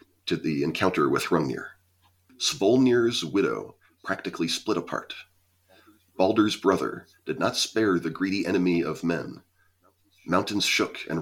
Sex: male